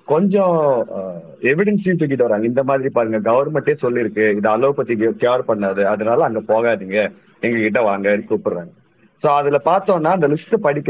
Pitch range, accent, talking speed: 105-165 Hz, native, 70 wpm